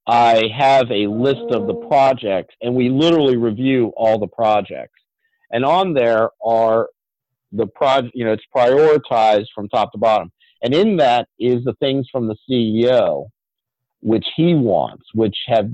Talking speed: 160 wpm